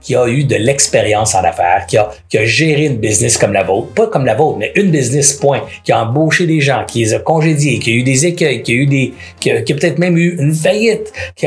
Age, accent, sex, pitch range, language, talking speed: 60-79, Canadian, male, 130-175 Hz, French, 275 wpm